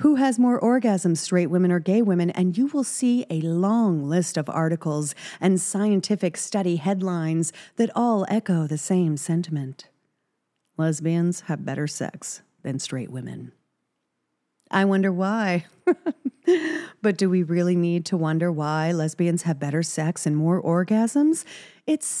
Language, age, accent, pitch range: English, 40-59, American, 160-200 Hz